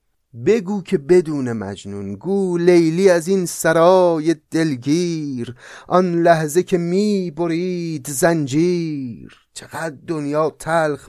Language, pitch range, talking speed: Persian, 120-165 Hz, 95 wpm